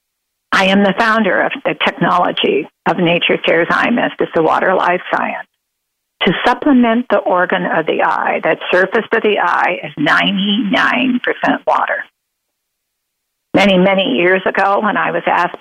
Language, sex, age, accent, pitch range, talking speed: English, female, 50-69, American, 170-225 Hz, 150 wpm